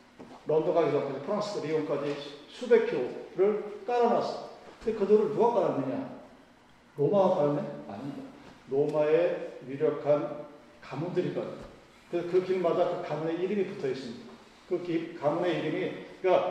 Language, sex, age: Korean, male, 40-59